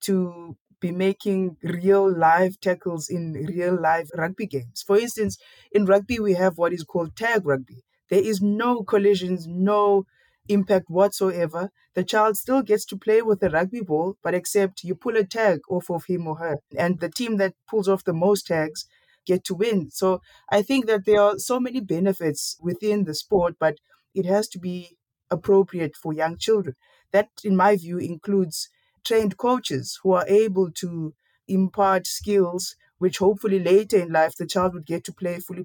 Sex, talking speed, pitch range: female, 180 wpm, 175-205 Hz